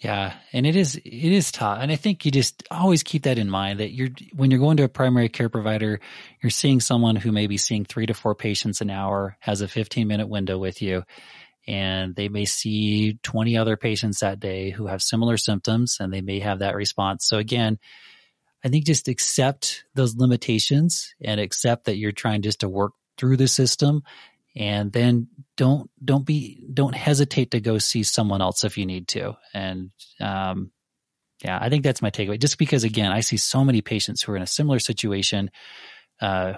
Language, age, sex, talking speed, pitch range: English, 20-39, male, 205 wpm, 100-125 Hz